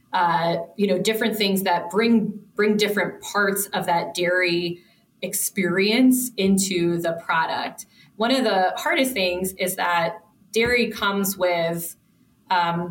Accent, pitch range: American, 175-215 Hz